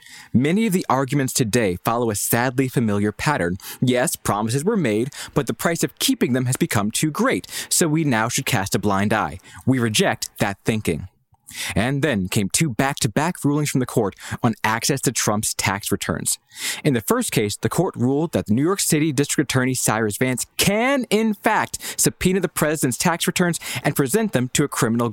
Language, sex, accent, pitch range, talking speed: English, male, American, 120-180 Hz, 190 wpm